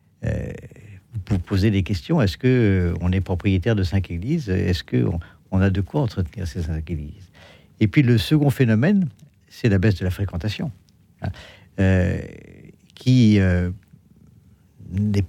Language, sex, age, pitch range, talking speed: French, male, 50-69, 95-130 Hz, 155 wpm